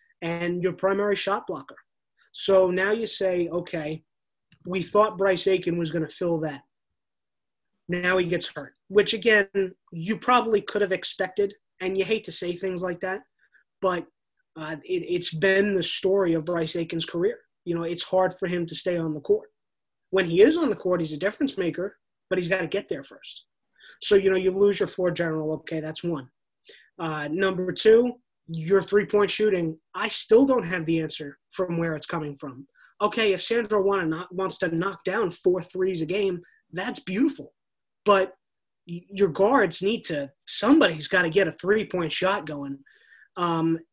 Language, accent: English, American